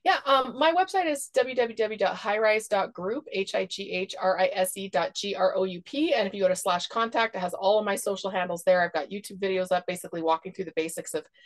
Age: 30-49